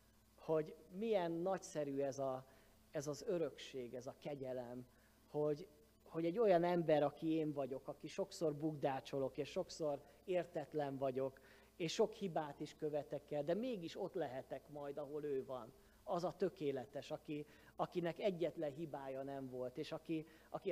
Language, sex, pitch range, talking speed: Hungarian, male, 135-165 Hz, 145 wpm